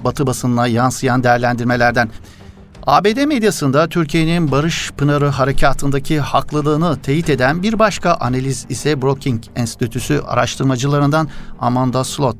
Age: 50-69